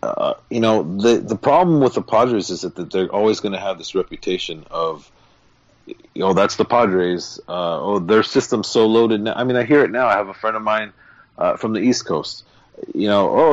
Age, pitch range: 40-59, 115-155 Hz